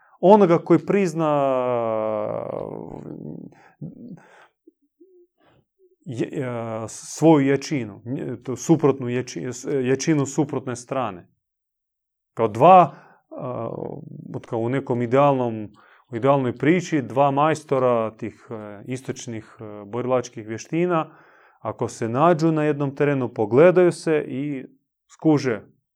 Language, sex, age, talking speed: Croatian, male, 30-49, 80 wpm